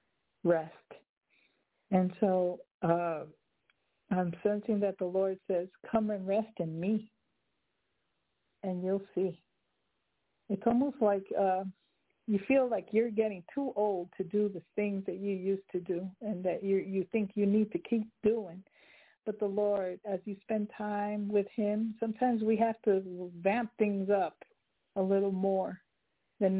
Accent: American